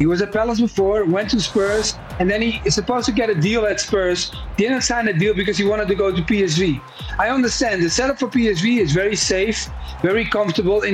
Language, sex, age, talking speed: English, male, 40-59, 230 wpm